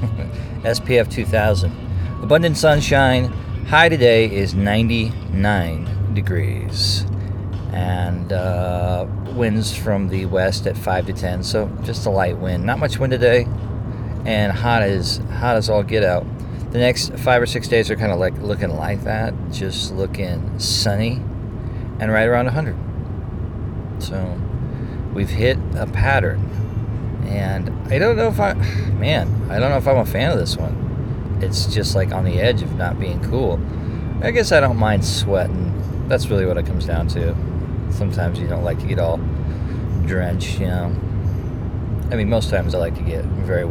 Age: 40-59